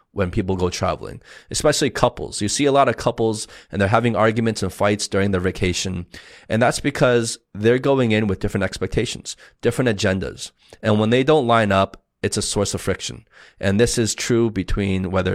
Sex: male